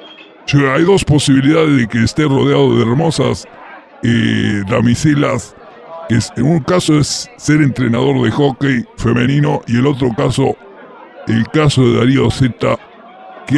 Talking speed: 145 wpm